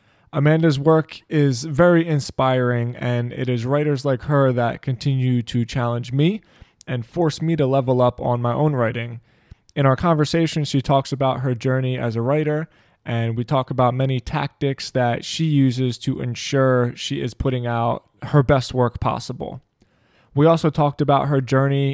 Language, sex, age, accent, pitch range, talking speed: English, male, 20-39, American, 125-150 Hz, 170 wpm